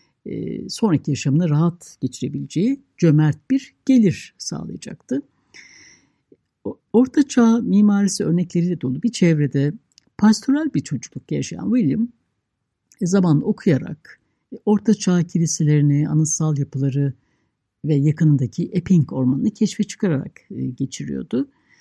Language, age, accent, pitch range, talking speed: Turkish, 60-79, native, 145-200 Hz, 90 wpm